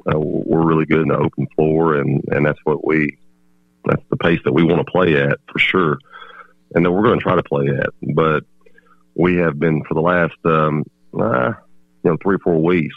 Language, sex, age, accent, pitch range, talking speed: English, male, 40-59, American, 70-80 Hz, 220 wpm